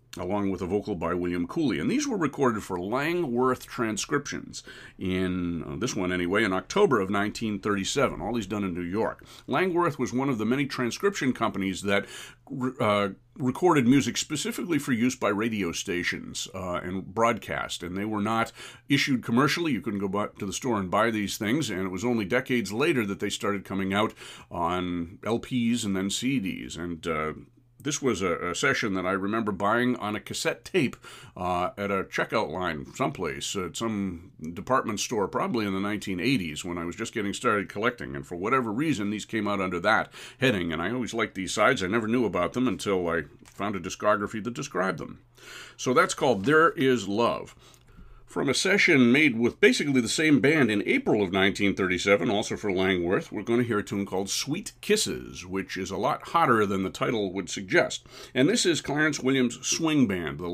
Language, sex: English, male